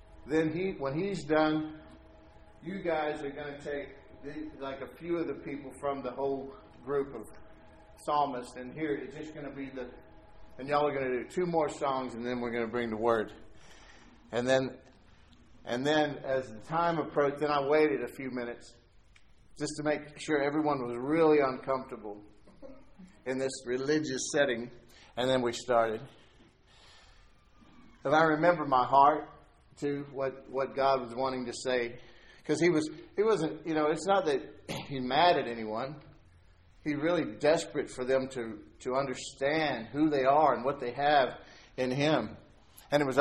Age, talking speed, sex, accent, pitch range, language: 50-69, 175 wpm, male, American, 120-150 Hz, English